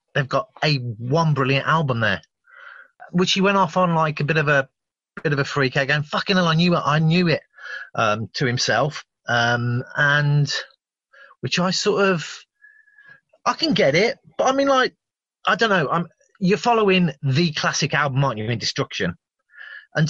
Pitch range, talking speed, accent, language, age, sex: 135-185 Hz, 190 wpm, British, English, 30-49, male